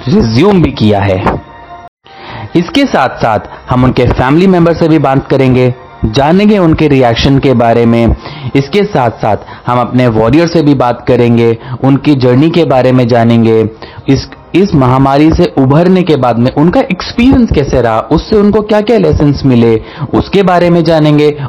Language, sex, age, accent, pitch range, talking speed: English, male, 30-49, Indian, 115-175 Hz, 155 wpm